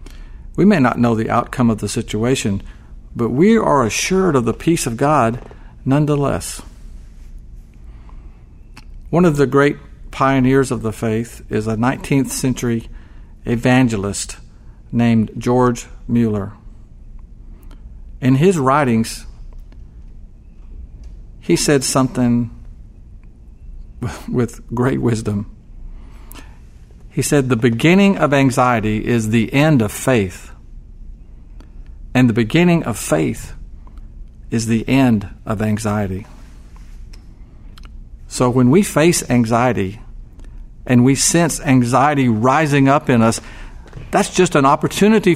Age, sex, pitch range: 50-69, male, 105-140 Hz